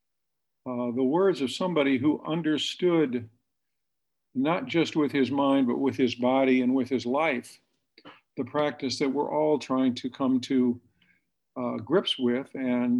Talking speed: 150 wpm